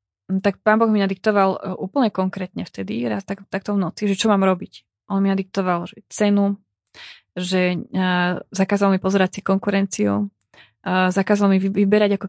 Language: Slovak